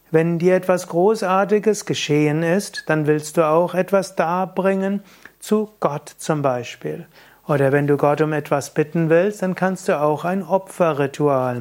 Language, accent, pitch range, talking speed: German, German, 145-185 Hz, 155 wpm